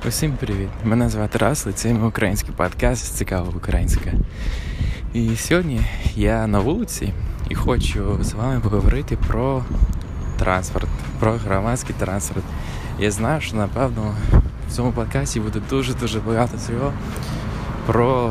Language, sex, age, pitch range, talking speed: Ukrainian, male, 20-39, 100-120 Hz, 125 wpm